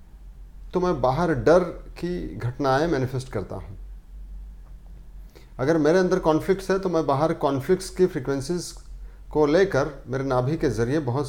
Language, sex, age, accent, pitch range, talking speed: Hindi, male, 40-59, native, 110-170 Hz, 145 wpm